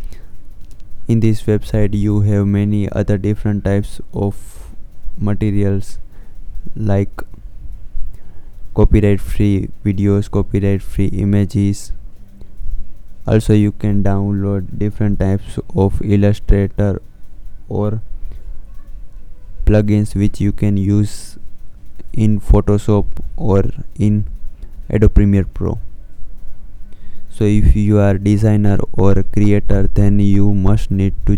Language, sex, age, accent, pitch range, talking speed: Hindi, male, 20-39, native, 95-105 Hz, 100 wpm